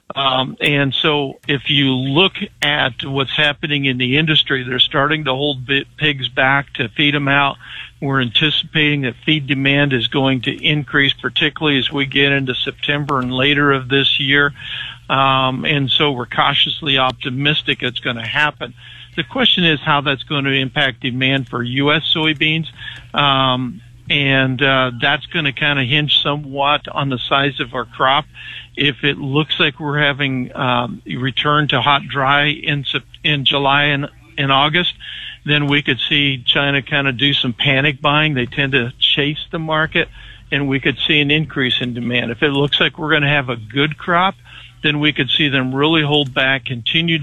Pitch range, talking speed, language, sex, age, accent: 130-145 Hz, 180 wpm, English, male, 50-69, American